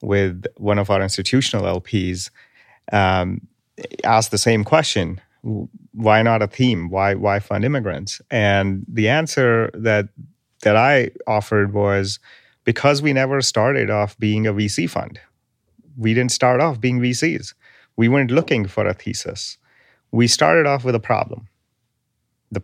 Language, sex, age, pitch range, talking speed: English, male, 30-49, 105-135 Hz, 145 wpm